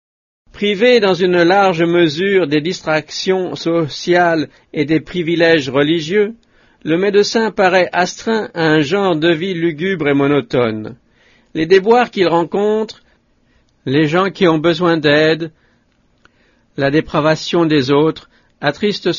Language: English